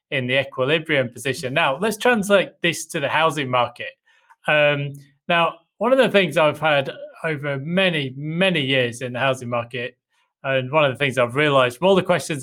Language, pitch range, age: English, 135-175 Hz, 20-39